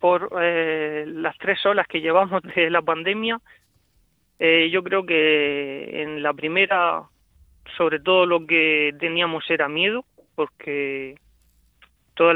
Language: Spanish